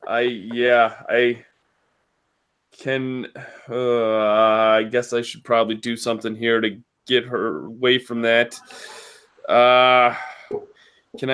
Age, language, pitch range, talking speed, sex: 20-39, English, 115-145 Hz, 110 wpm, male